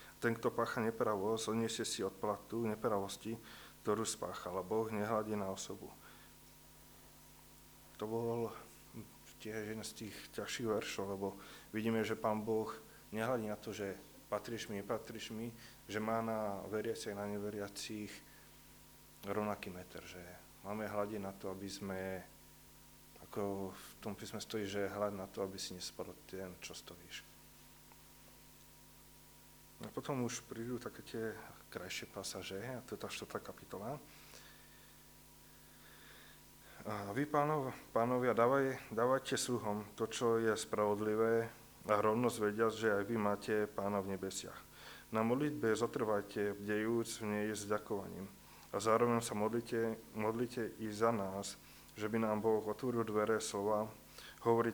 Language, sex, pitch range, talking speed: Slovak, male, 100-115 Hz, 135 wpm